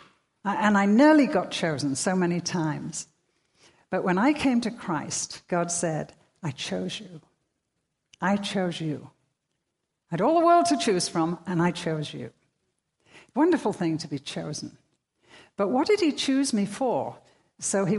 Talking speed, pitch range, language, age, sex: 160 wpm, 160-215 Hz, English, 60-79, female